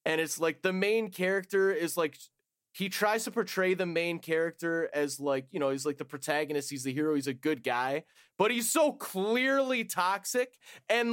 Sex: male